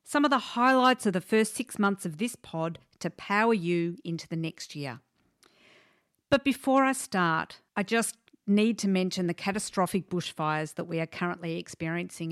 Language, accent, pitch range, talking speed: English, Australian, 165-205 Hz, 175 wpm